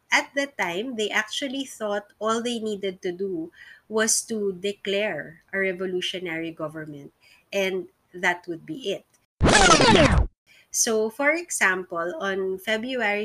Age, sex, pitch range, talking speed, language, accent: 20-39, female, 175-210 Hz, 120 wpm, English, Filipino